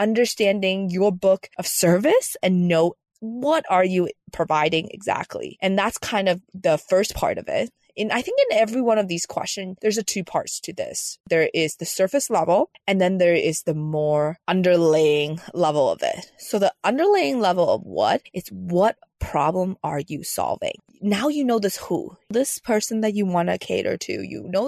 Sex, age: female, 20-39